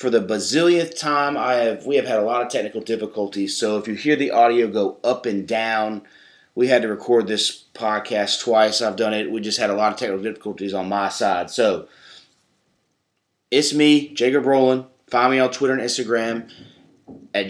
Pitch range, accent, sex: 115-140 Hz, American, male